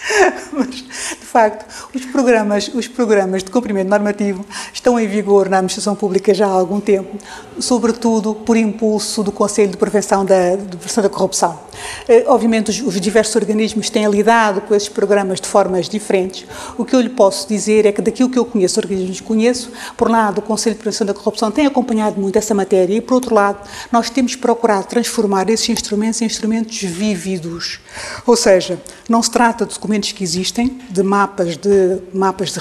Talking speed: 180 wpm